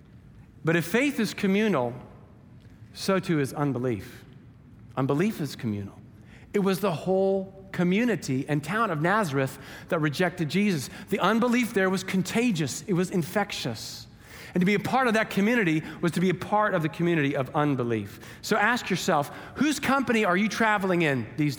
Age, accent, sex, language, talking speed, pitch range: 40-59, American, male, English, 165 wpm, 140-205 Hz